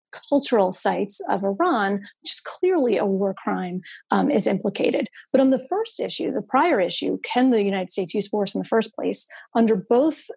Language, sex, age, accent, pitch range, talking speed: English, female, 30-49, American, 200-260 Hz, 190 wpm